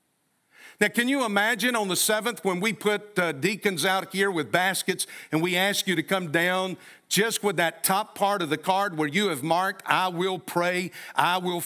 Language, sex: English, male